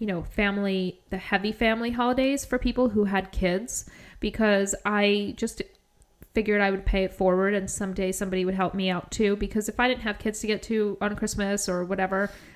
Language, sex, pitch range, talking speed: English, female, 190-215 Hz, 200 wpm